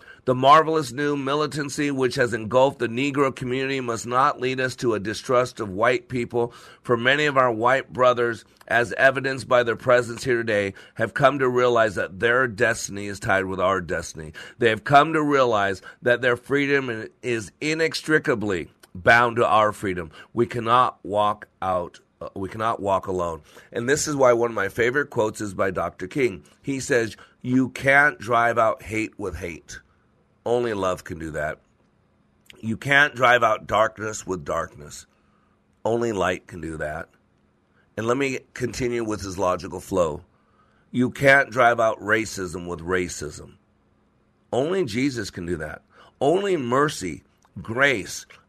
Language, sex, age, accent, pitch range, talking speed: English, male, 40-59, American, 95-130 Hz, 160 wpm